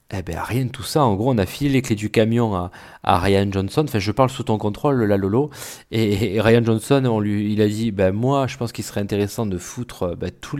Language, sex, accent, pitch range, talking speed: French, male, French, 105-135 Hz, 265 wpm